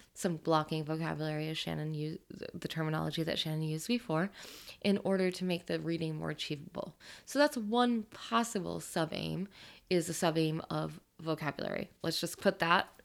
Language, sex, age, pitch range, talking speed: English, female, 20-39, 155-190 Hz, 155 wpm